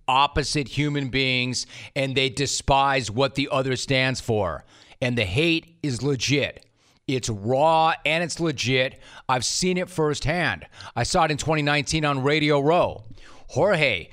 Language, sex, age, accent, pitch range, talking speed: English, male, 40-59, American, 125-150 Hz, 145 wpm